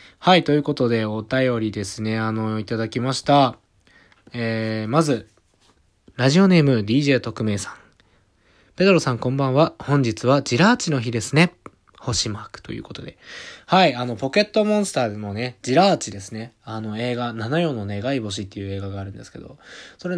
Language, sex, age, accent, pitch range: Japanese, male, 20-39, native, 105-145 Hz